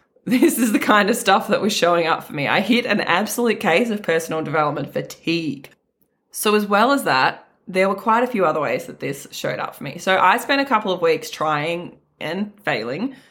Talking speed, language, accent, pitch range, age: 220 wpm, English, Australian, 160-215 Hz, 20-39